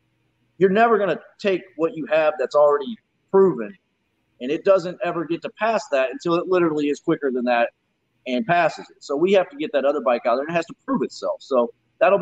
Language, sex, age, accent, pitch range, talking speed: English, male, 30-49, American, 130-180 Hz, 230 wpm